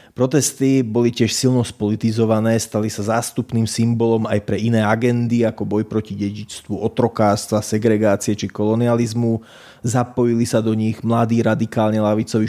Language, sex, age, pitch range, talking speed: Slovak, male, 30-49, 105-120 Hz, 135 wpm